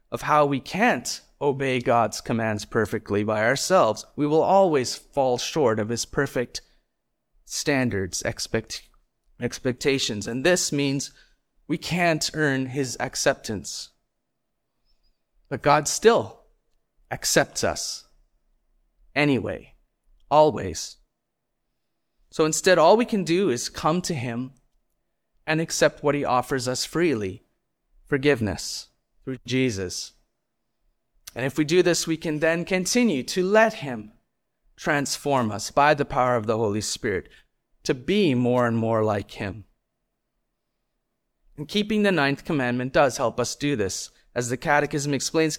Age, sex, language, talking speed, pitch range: 30-49, male, English, 130 wpm, 120-160 Hz